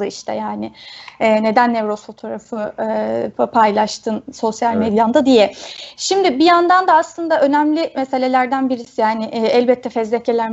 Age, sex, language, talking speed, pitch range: 30-49, female, Turkish, 110 wpm, 230-280 Hz